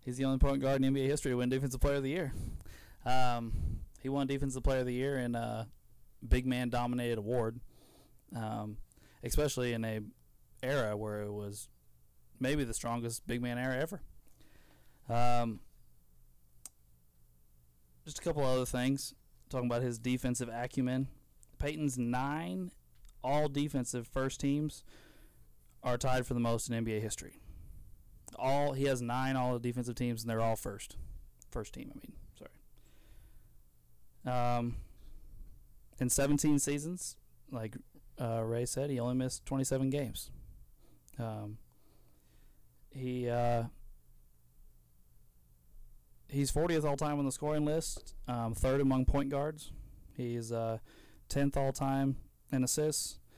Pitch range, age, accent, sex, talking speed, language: 85-130 Hz, 20-39, American, male, 135 wpm, English